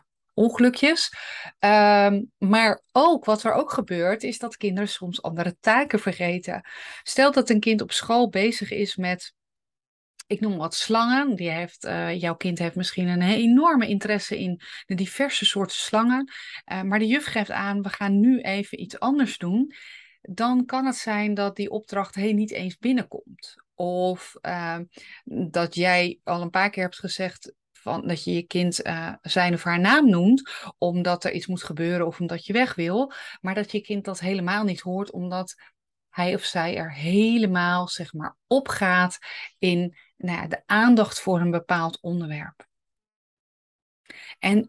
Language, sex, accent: Dutch, female, Dutch